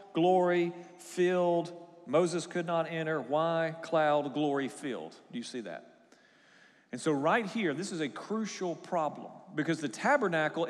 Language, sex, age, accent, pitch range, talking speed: English, male, 40-59, American, 150-180 Hz, 145 wpm